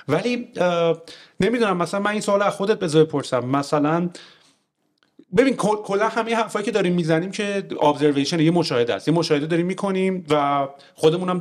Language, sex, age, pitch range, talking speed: English, male, 40-59, 145-185 Hz, 145 wpm